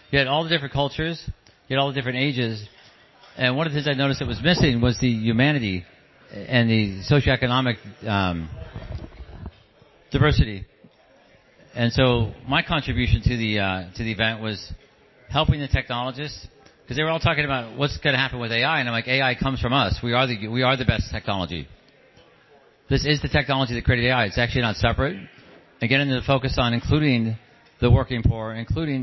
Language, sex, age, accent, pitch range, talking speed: English, male, 50-69, American, 115-135 Hz, 190 wpm